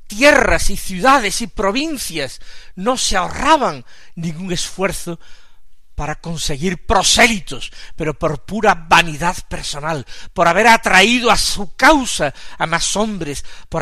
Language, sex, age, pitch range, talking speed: Spanish, male, 50-69, 135-185 Hz, 120 wpm